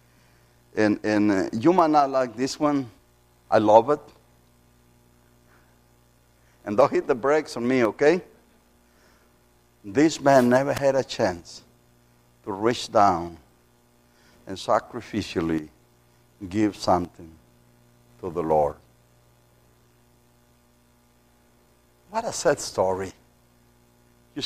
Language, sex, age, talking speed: English, male, 60-79, 100 wpm